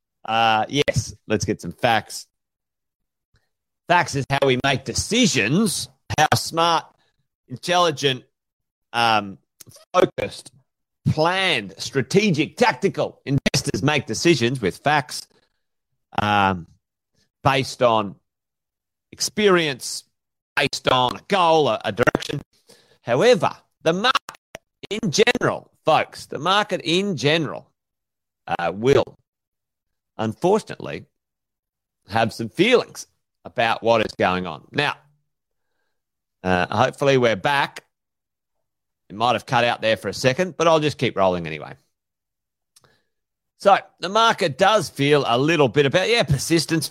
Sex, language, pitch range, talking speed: male, English, 115-165 Hz, 115 wpm